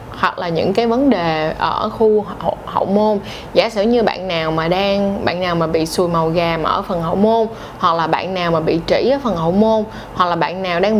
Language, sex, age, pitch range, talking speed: Vietnamese, female, 20-39, 175-220 Hz, 245 wpm